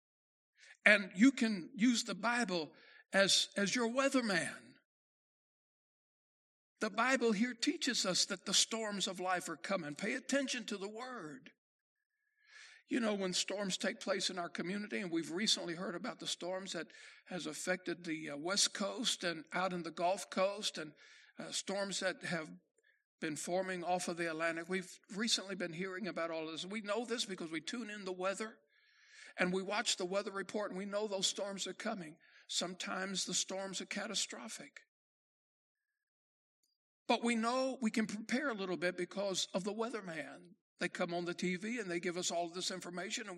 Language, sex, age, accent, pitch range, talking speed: English, male, 60-79, American, 180-235 Hz, 175 wpm